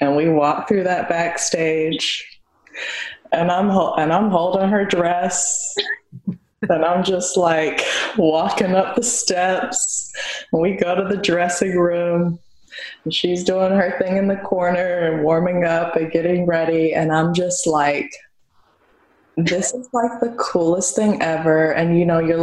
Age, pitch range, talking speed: 20-39, 150-175 Hz, 150 wpm